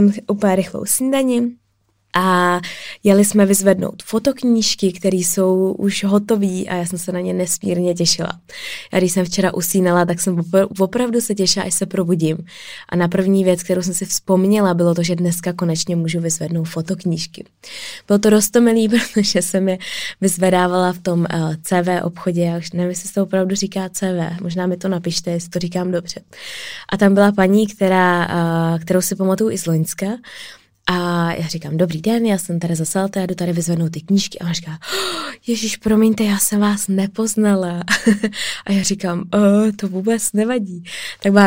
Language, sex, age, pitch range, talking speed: Czech, female, 20-39, 175-200 Hz, 175 wpm